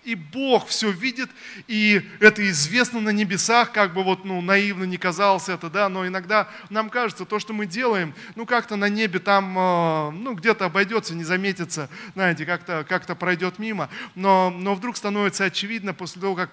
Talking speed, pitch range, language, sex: 180 wpm, 170-205 Hz, Russian, male